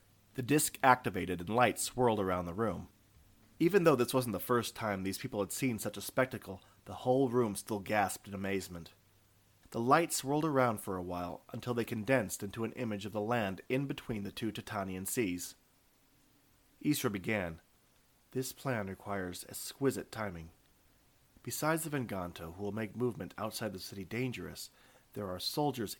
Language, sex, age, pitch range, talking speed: English, male, 40-59, 95-130 Hz, 170 wpm